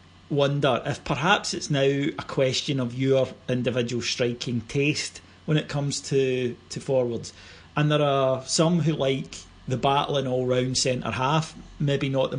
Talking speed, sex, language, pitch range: 150 wpm, male, English, 120-140 Hz